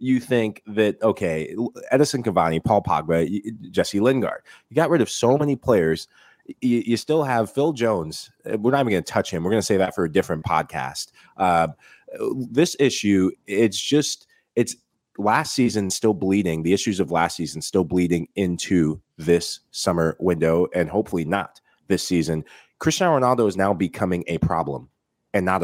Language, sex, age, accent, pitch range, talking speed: English, male, 30-49, American, 85-120 Hz, 175 wpm